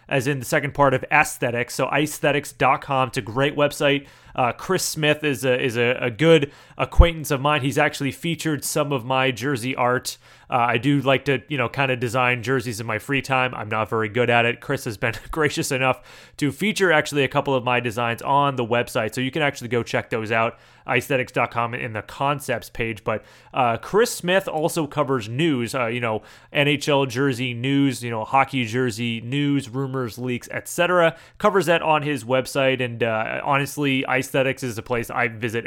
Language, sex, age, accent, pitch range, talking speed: English, male, 30-49, American, 120-150 Hz, 200 wpm